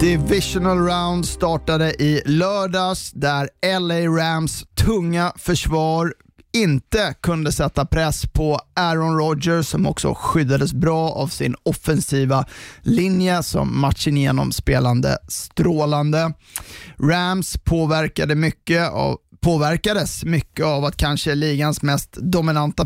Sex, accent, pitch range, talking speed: male, native, 140-170 Hz, 110 wpm